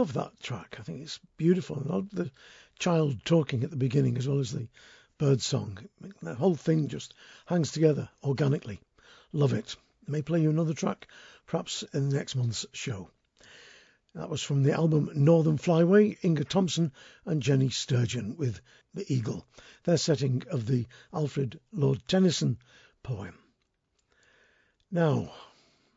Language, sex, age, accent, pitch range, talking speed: English, male, 60-79, British, 135-170 Hz, 155 wpm